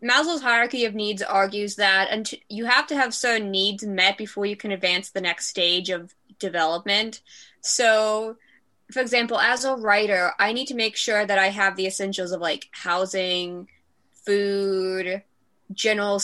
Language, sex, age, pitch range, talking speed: English, female, 20-39, 195-230 Hz, 160 wpm